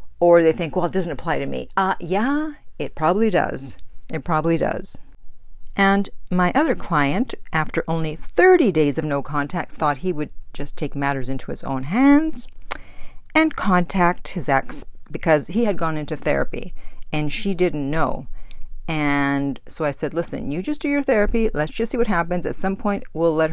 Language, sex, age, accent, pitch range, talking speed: English, female, 50-69, American, 145-195 Hz, 185 wpm